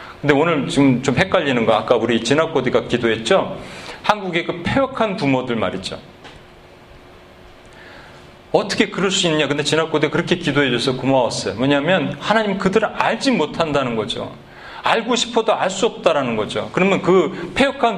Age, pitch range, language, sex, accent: 40-59, 140-225 Hz, Korean, male, native